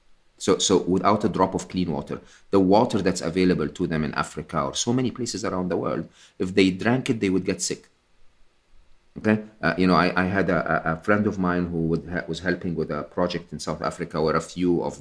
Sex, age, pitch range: male, 40-59, 90-120 Hz